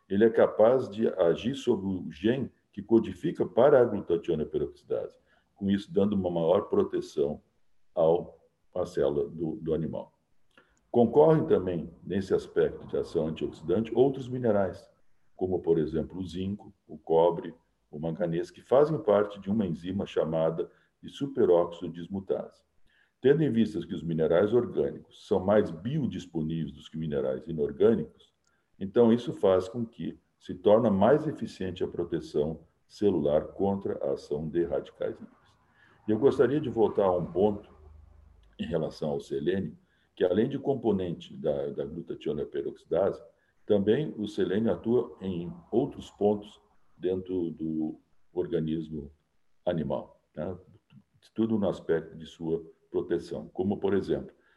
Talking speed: 135 wpm